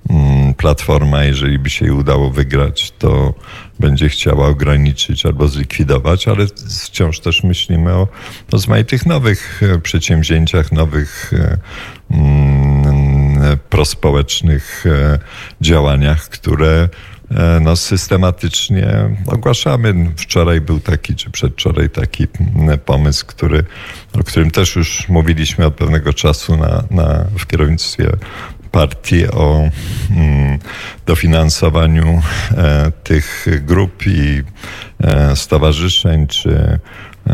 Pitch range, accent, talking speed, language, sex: 75-95 Hz, native, 85 wpm, Polish, male